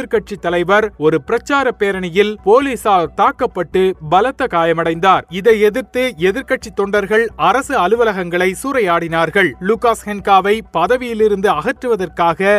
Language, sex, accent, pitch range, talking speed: Tamil, male, native, 185-235 Hz, 90 wpm